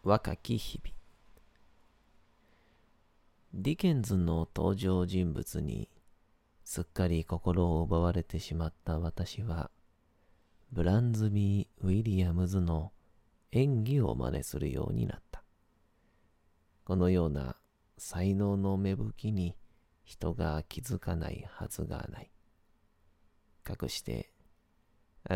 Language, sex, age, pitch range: Japanese, male, 40-59, 80-100 Hz